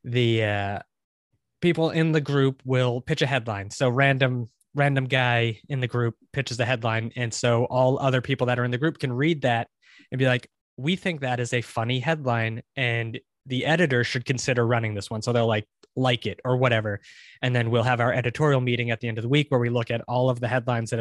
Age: 20-39